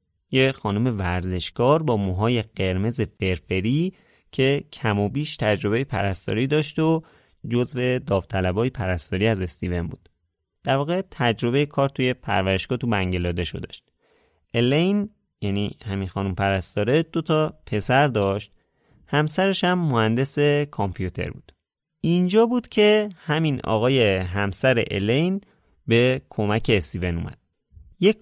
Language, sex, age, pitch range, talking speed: Persian, male, 30-49, 100-150 Hz, 120 wpm